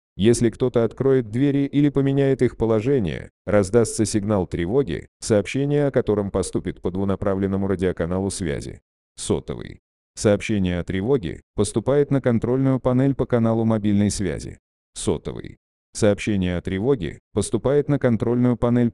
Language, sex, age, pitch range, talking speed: Russian, male, 30-49, 95-130 Hz, 125 wpm